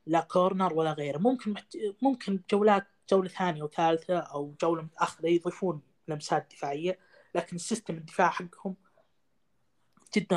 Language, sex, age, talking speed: Arabic, female, 20-39, 120 wpm